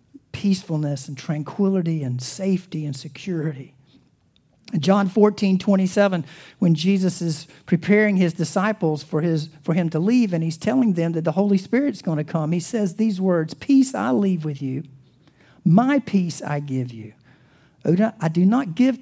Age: 50-69